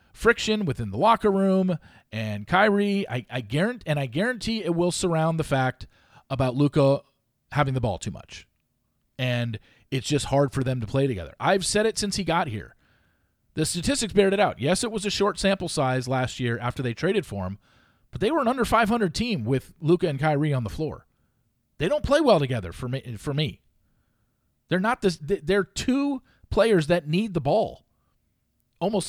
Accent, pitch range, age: American, 140-200 Hz, 40-59